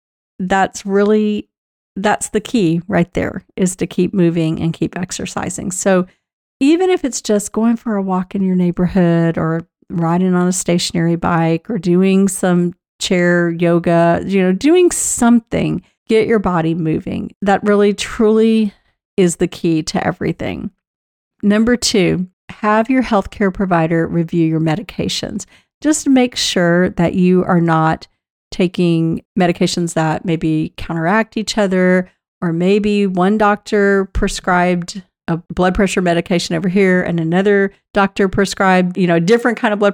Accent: American